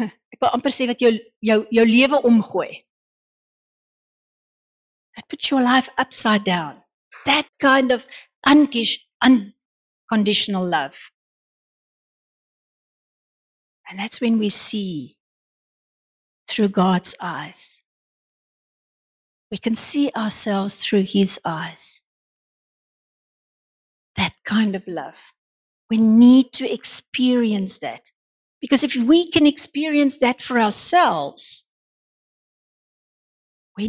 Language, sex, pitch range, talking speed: English, female, 200-255 Hz, 85 wpm